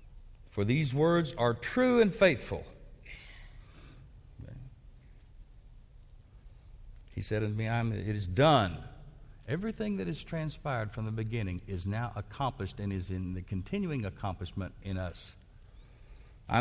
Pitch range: 105-135 Hz